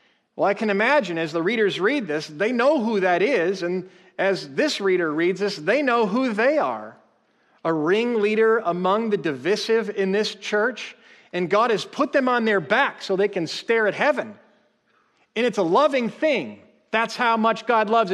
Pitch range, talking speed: 150-215 Hz, 190 wpm